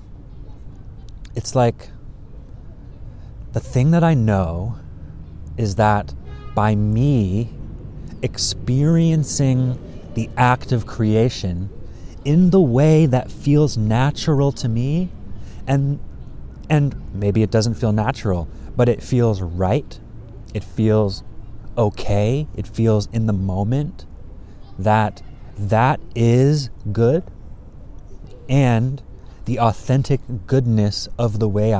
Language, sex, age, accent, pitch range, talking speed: English, male, 30-49, American, 95-125 Hz, 100 wpm